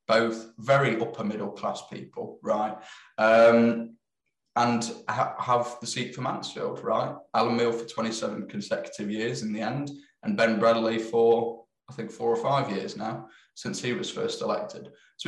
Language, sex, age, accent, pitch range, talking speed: English, male, 20-39, British, 115-165 Hz, 155 wpm